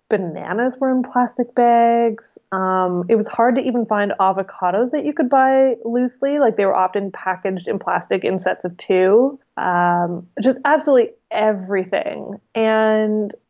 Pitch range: 185-235 Hz